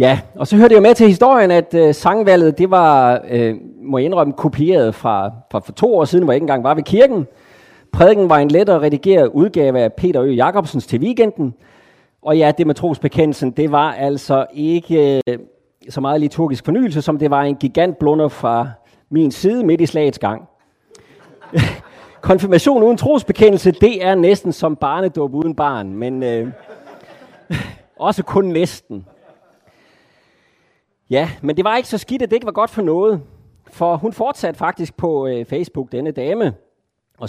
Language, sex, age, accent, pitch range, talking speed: Danish, male, 30-49, native, 140-195 Hz, 175 wpm